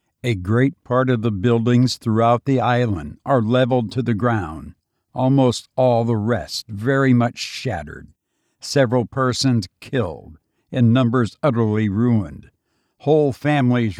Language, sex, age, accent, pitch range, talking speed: English, male, 60-79, American, 110-130 Hz, 130 wpm